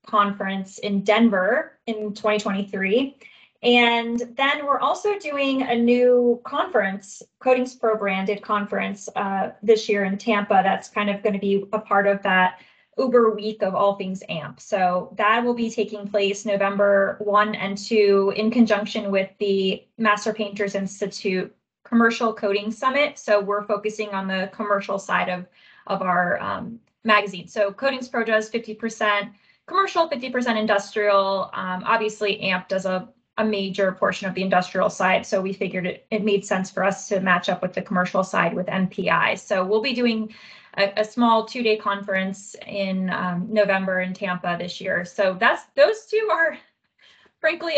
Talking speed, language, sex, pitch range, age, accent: 165 wpm, English, female, 195-230 Hz, 20-39, American